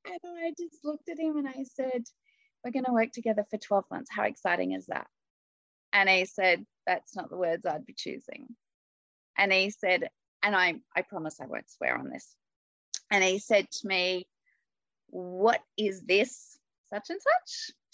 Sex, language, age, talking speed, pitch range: female, English, 30-49, 180 wpm, 185-270 Hz